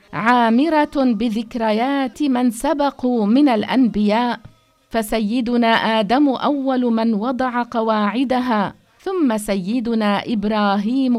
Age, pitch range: 50-69, 205-245 Hz